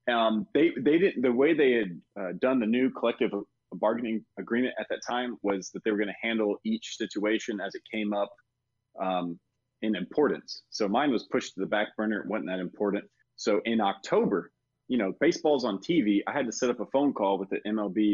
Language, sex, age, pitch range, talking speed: English, male, 30-49, 100-120 Hz, 215 wpm